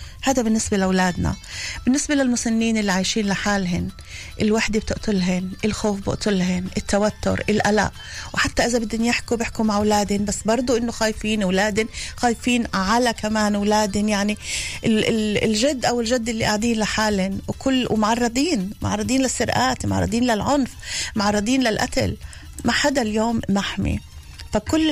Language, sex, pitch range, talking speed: Hebrew, female, 190-230 Hz, 120 wpm